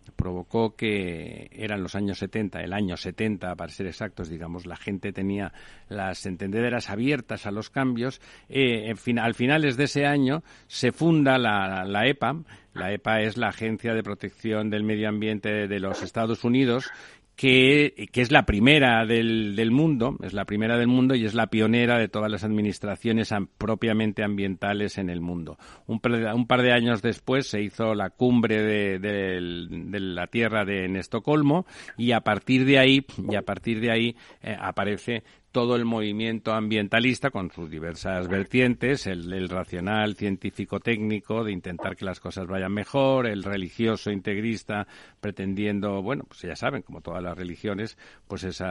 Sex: male